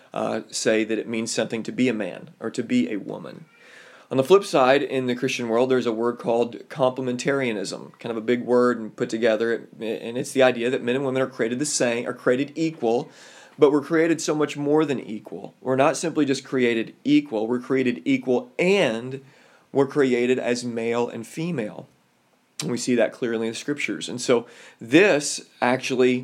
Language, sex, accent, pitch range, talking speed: English, male, American, 120-140 Hz, 200 wpm